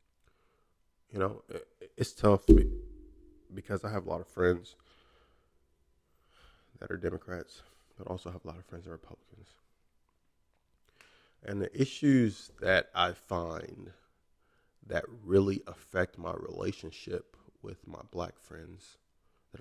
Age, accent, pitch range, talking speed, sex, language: 20-39, American, 85-105 Hz, 120 wpm, male, English